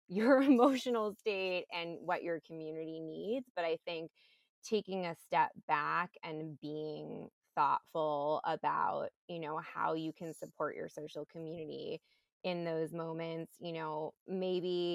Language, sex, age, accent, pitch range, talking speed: English, female, 20-39, American, 155-180 Hz, 135 wpm